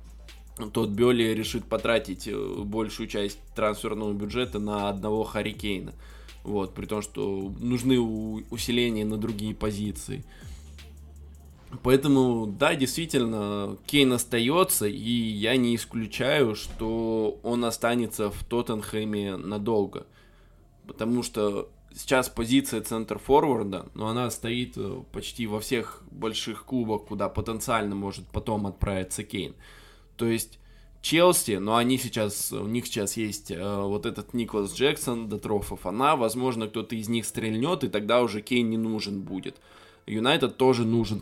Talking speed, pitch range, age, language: 125 wpm, 100-115 Hz, 20-39, Russian